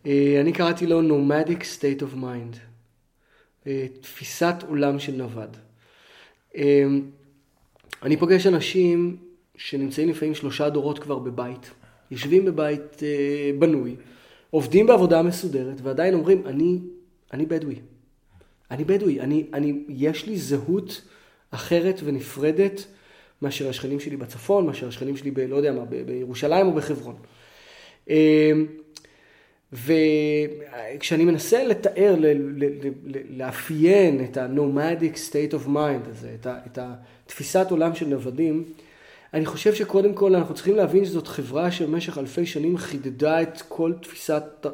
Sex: male